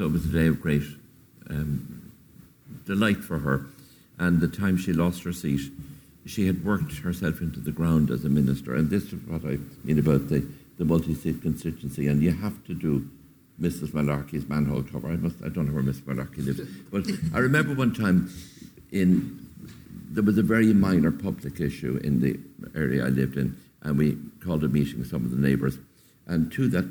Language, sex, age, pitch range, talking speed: English, male, 60-79, 70-90 Hz, 200 wpm